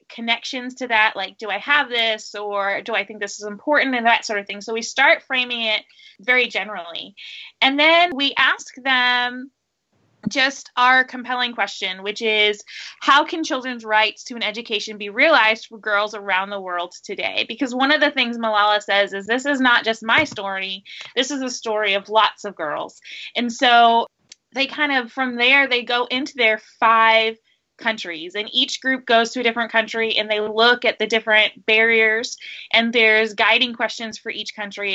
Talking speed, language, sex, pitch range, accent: 190 wpm, English, female, 215-255 Hz, American